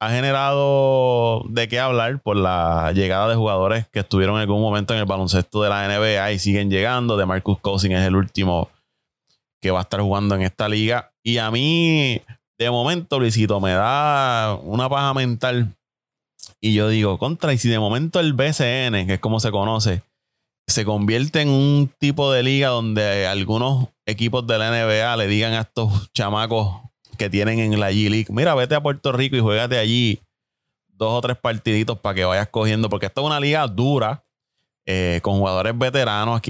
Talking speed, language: 185 wpm, Spanish